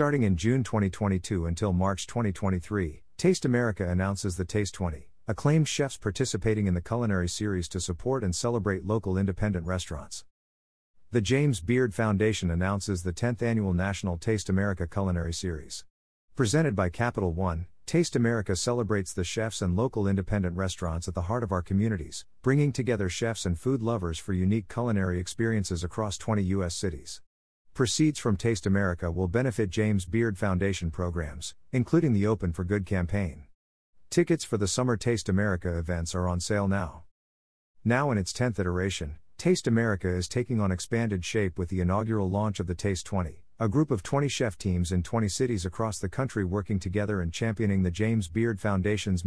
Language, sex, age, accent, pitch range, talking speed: English, male, 50-69, American, 90-115 Hz, 170 wpm